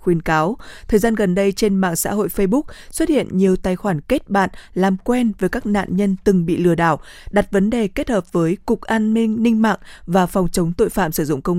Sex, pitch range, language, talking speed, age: female, 180-220 Hz, Vietnamese, 245 wpm, 20-39